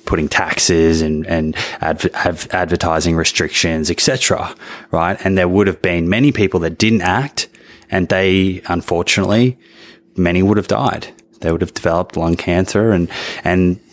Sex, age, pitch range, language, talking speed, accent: male, 20-39, 85-100 Hz, English, 150 wpm, Australian